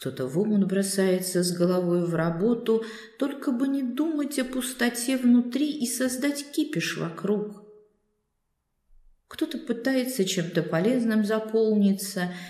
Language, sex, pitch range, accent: Russian, female, 160-225 Hz, native